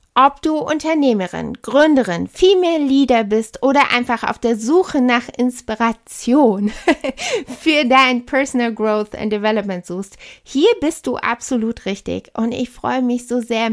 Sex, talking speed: female, 140 wpm